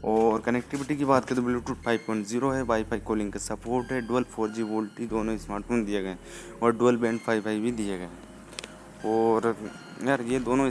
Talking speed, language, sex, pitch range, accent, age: 180 wpm, Hindi, male, 110-125 Hz, native, 20-39